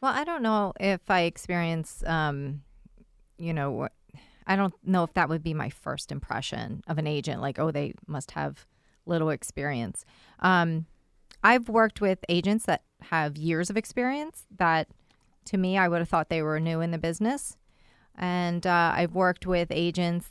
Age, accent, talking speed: 30-49, American, 175 wpm